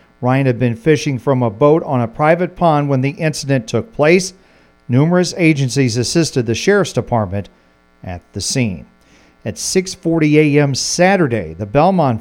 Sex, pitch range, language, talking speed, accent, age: male, 120-155 Hz, English, 150 wpm, American, 50-69